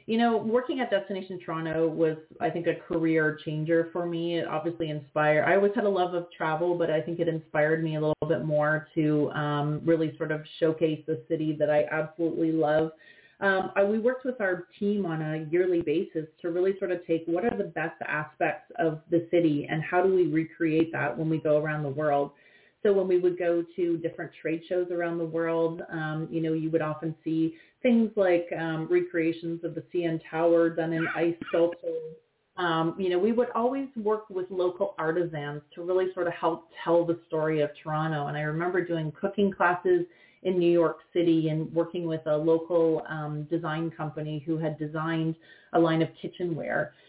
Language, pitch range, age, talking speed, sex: English, 155-175 Hz, 30-49, 200 wpm, female